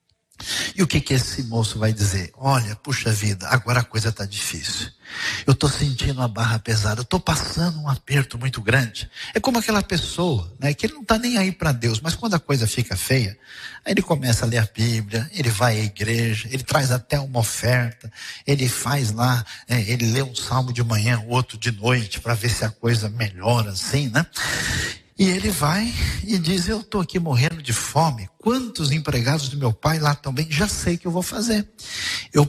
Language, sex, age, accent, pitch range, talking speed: Portuguese, male, 60-79, Brazilian, 115-165 Hz, 205 wpm